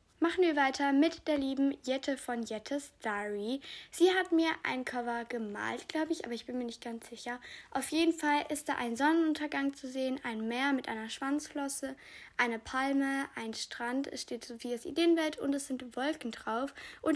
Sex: female